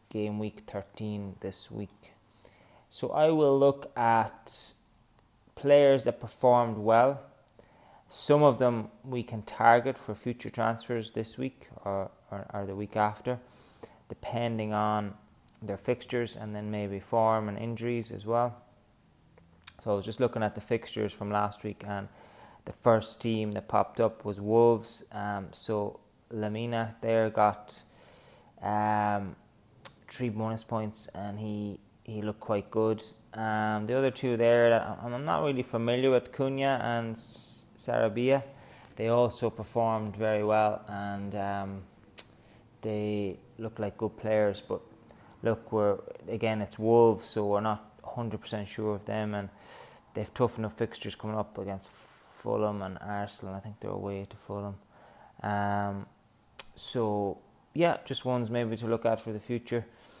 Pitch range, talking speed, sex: 105-120 Hz, 145 wpm, male